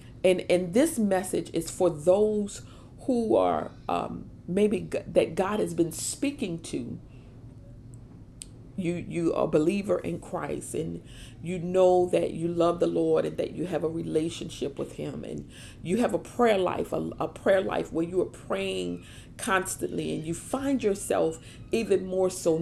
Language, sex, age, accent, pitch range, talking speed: English, female, 40-59, American, 155-220 Hz, 165 wpm